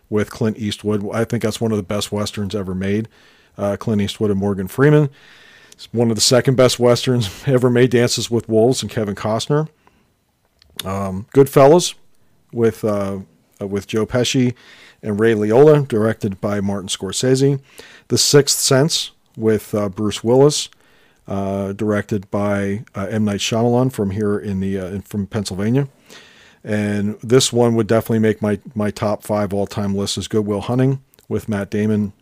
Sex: male